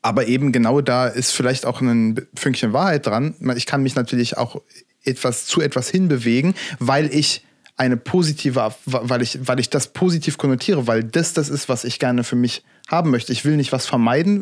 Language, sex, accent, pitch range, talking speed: German, male, German, 130-155 Hz, 195 wpm